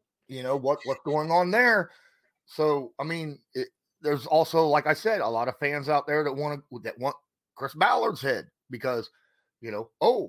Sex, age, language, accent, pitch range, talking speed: male, 30-49, English, American, 110-145 Hz, 200 wpm